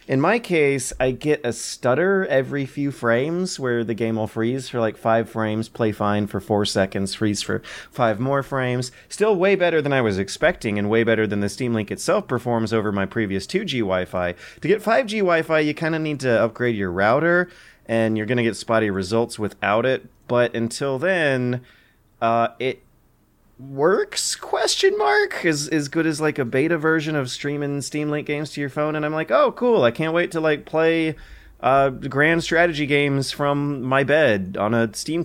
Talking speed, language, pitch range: 195 wpm, English, 110-150 Hz